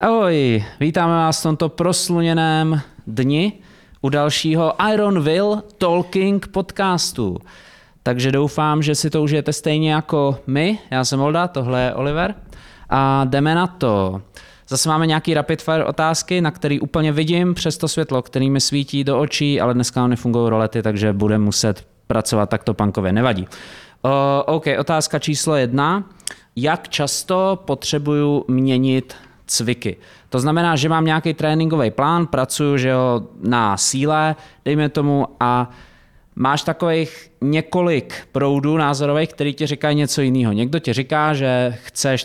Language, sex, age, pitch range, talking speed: Czech, male, 20-39, 120-160 Hz, 145 wpm